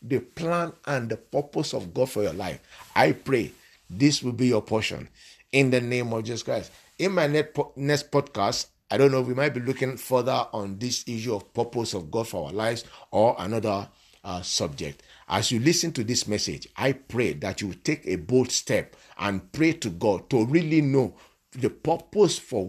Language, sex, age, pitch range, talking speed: English, male, 50-69, 105-130 Hz, 195 wpm